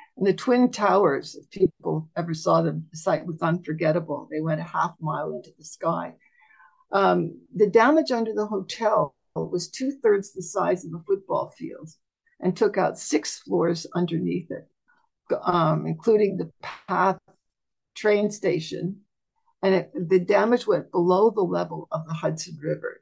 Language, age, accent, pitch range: English, 60-79, American, 170-220 Hz